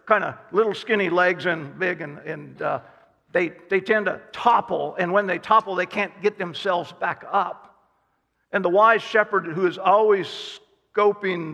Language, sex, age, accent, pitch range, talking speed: English, male, 50-69, American, 180-210 Hz, 170 wpm